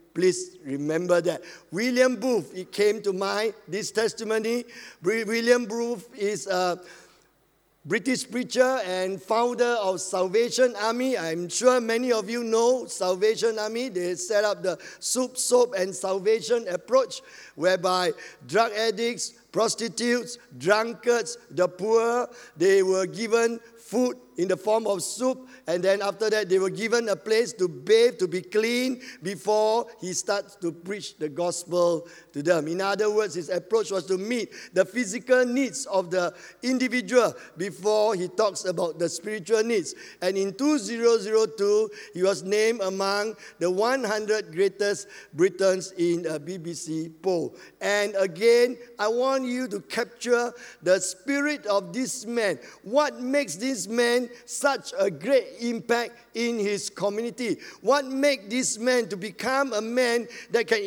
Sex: male